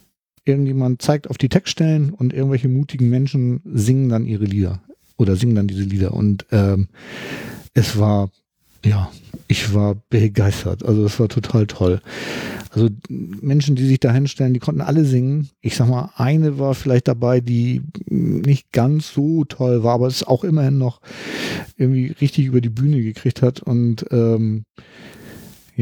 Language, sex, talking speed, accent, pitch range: German, male, 160 wpm, German, 115-140 Hz